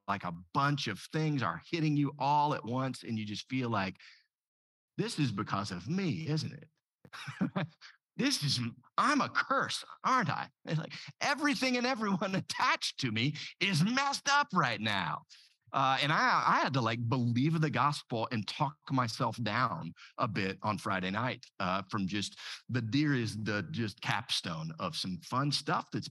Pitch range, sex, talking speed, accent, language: 105-155 Hz, male, 175 wpm, American, English